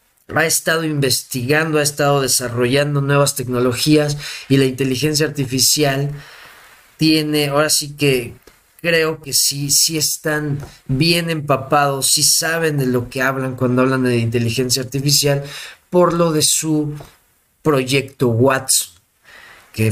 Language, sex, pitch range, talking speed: Spanish, male, 130-160 Hz, 125 wpm